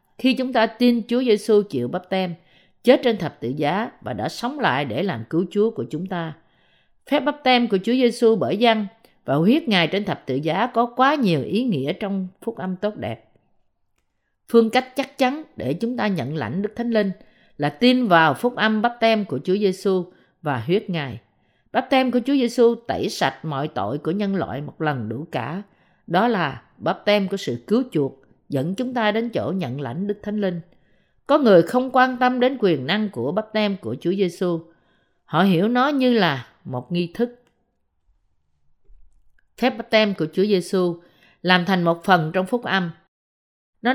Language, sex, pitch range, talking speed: Vietnamese, female, 165-235 Hz, 195 wpm